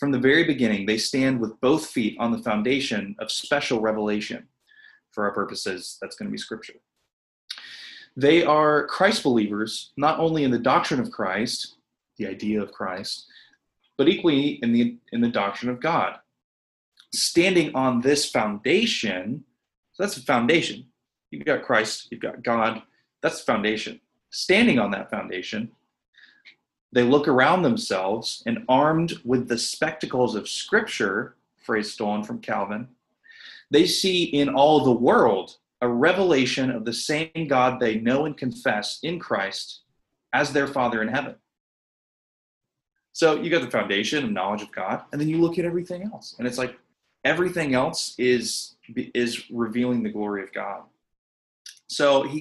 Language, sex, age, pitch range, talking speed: English, male, 20-39, 110-150 Hz, 155 wpm